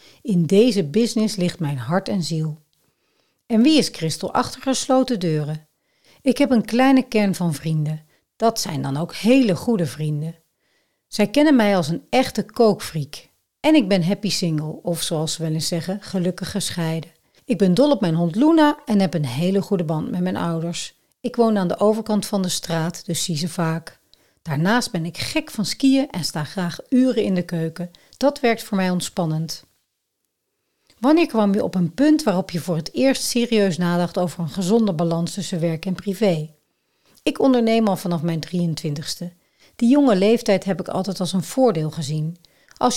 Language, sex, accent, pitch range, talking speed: Dutch, female, Dutch, 165-225 Hz, 185 wpm